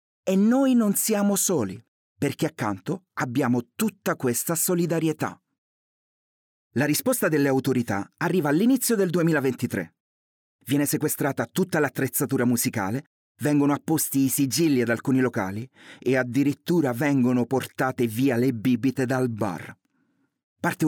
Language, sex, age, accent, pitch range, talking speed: Italian, male, 30-49, native, 125-160 Hz, 120 wpm